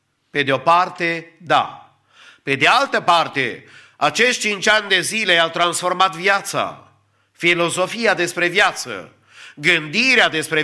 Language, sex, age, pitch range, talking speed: English, male, 50-69, 145-190 Hz, 125 wpm